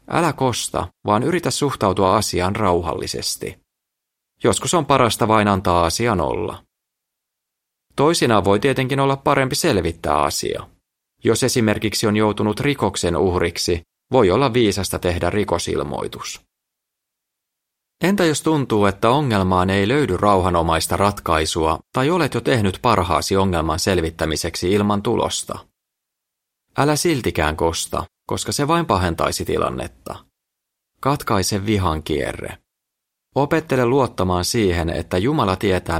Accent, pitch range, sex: native, 85-120 Hz, male